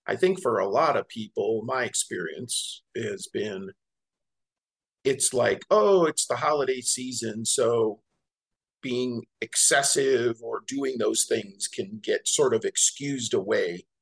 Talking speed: 135 wpm